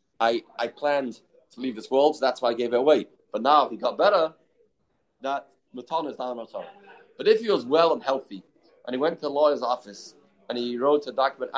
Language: English